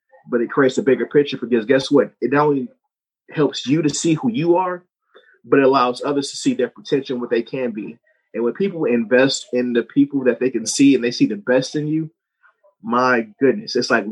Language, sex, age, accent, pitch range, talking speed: English, male, 30-49, American, 125-190 Hz, 230 wpm